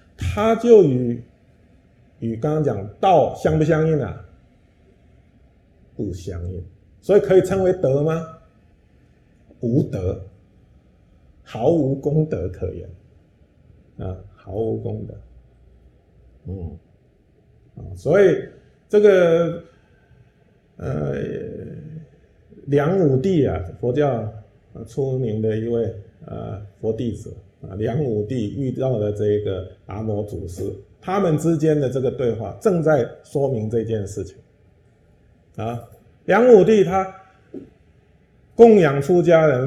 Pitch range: 100-145 Hz